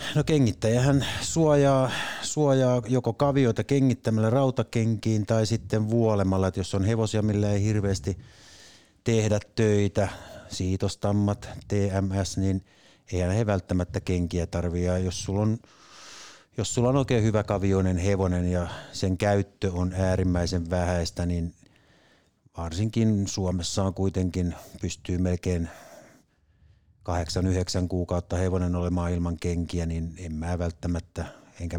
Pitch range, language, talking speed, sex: 90-110 Hz, Finnish, 115 wpm, male